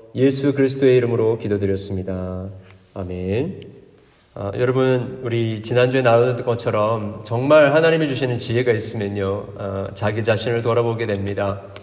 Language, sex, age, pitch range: Korean, male, 40-59, 100-130 Hz